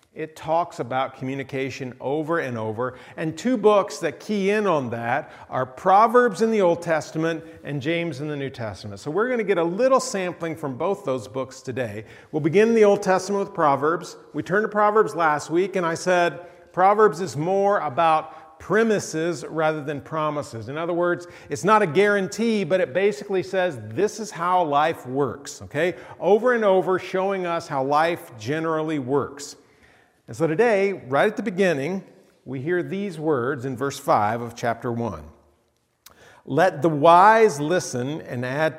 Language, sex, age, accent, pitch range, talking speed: English, male, 40-59, American, 135-190 Hz, 175 wpm